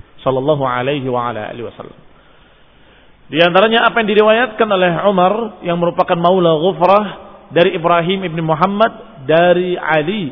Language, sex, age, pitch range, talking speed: Indonesian, male, 40-59, 155-195 Hz, 135 wpm